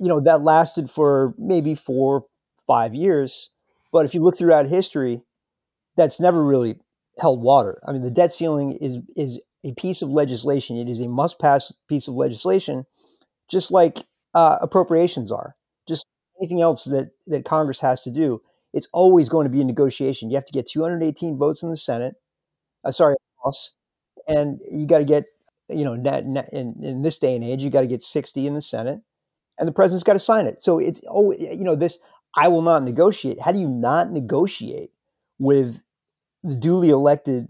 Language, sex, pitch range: English, male, 135-165 Hz